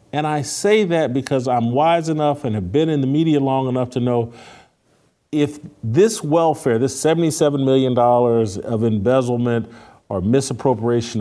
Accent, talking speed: American, 150 wpm